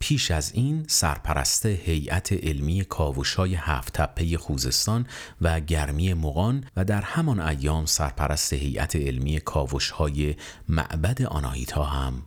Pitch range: 75-105 Hz